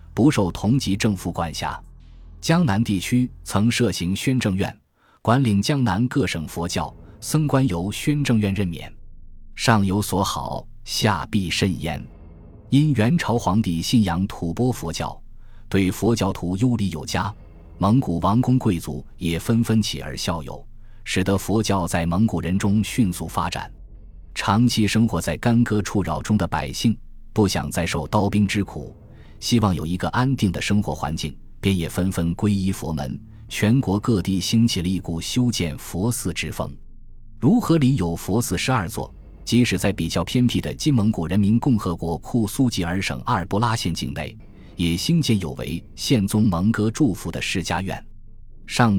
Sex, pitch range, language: male, 85-115 Hz, Chinese